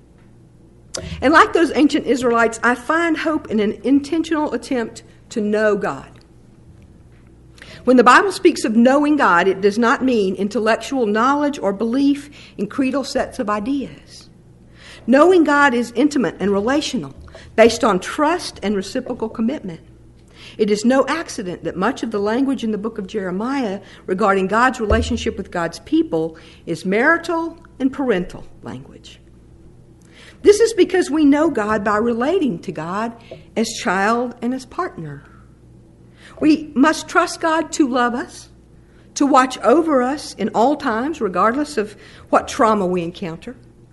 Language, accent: English, American